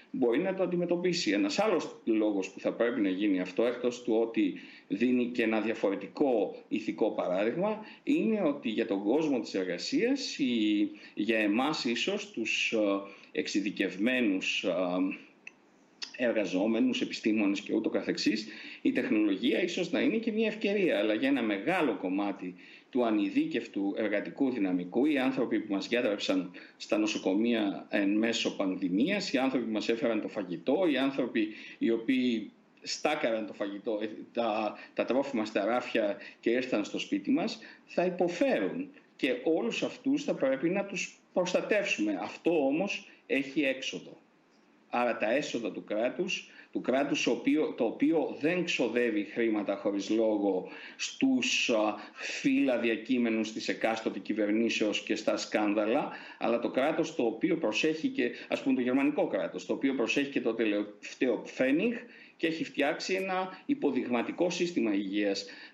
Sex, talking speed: male, 140 wpm